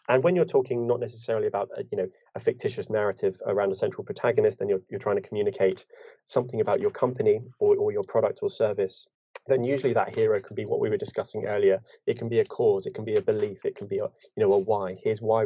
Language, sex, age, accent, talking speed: English, male, 20-39, British, 250 wpm